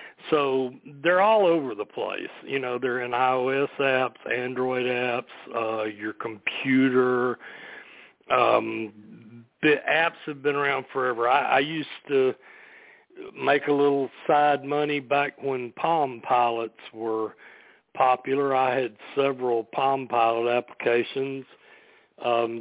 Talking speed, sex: 120 wpm, male